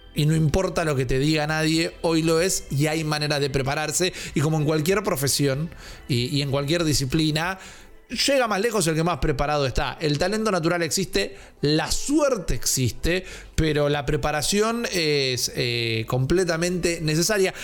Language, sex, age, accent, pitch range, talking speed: Spanish, male, 30-49, Argentinian, 145-185 Hz, 165 wpm